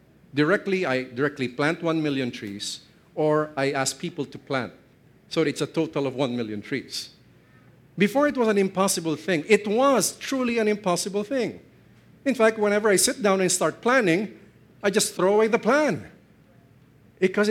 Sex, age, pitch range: male, 50-69, 130-175 Hz